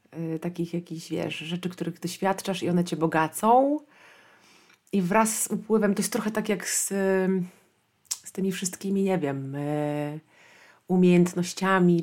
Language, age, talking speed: Polish, 30-49, 130 wpm